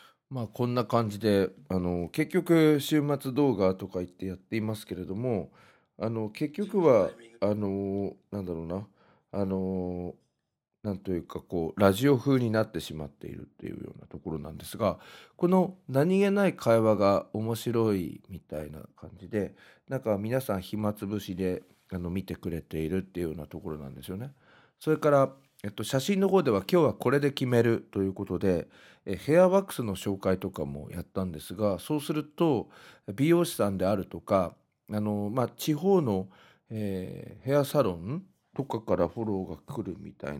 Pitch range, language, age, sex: 90-140 Hz, Japanese, 40-59, male